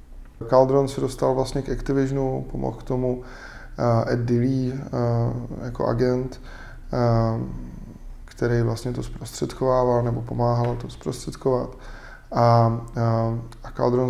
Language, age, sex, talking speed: Czech, 20-39, male, 120 wpm